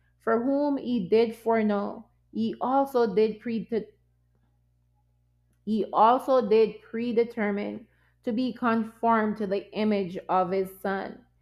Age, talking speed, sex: 20-39, 95 wpm, female